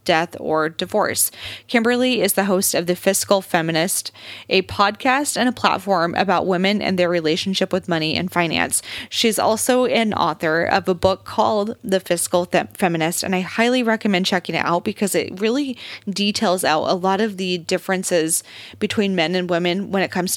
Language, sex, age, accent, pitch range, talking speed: English, female, 20-39, American, 175-215 Hz, 175 wpm